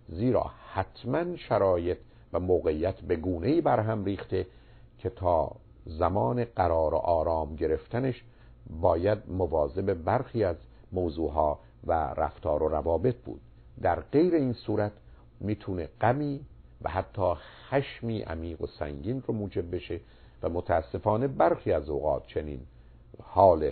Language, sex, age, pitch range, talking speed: Persian, male, 50-69, 85-120 Hz, 120 wpm